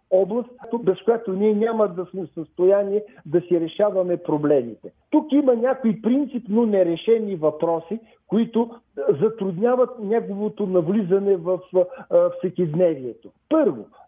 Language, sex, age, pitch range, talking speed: Bulgarian, male, 50-69, 185-235 Hz, 105 wpm